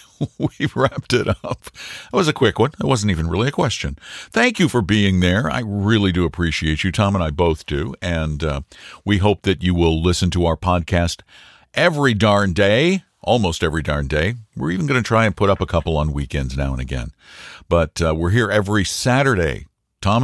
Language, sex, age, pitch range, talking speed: English, male, 60-79, 85-115 Hz, 210 wpm